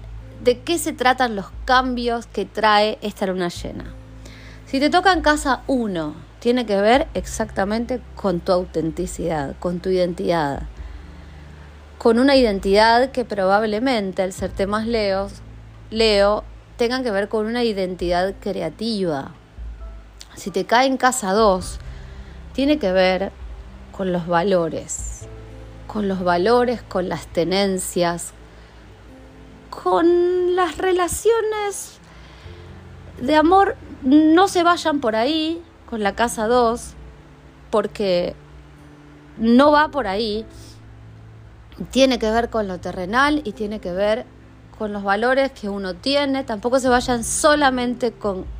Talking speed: 125 wpm